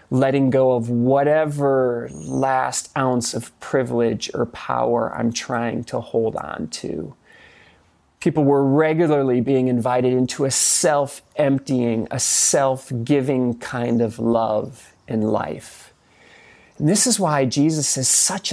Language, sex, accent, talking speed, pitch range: English, male, American, 125 wpm, 125-185 Hz